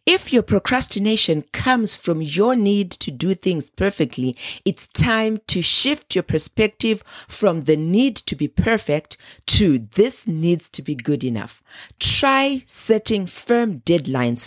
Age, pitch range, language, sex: 40-59, 150-210 Hz, English, female